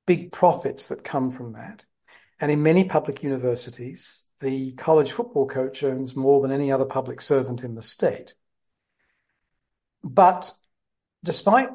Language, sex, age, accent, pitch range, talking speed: English, male, 50-69, British, 130-155 Hz, 140 wpm